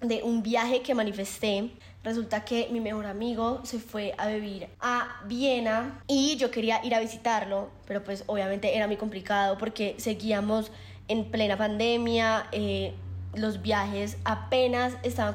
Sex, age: female, 20-39